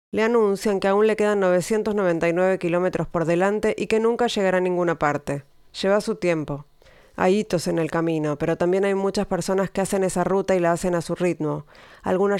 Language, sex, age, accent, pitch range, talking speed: Spanish, female, 30-49, Argentinian, 170-200 Hz, 200 wpm